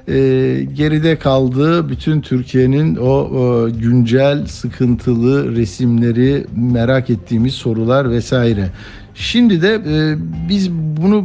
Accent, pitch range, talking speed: native, 115-150 Hz, 85 wpm